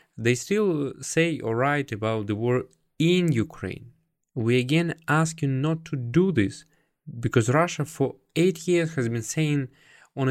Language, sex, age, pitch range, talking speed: English, male, 20-39, 110-155 Hz, 155 wpm